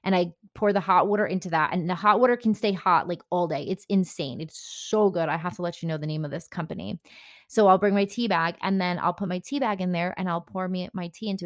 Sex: female